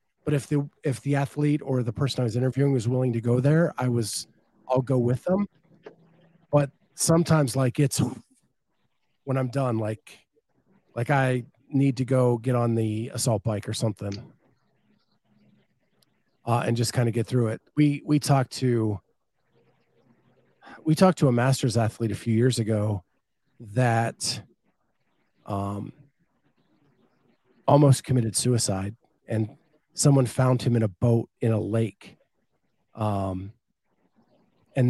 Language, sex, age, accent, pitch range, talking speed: English, male, 40-59, American, 115-140 Hz, 140 wpm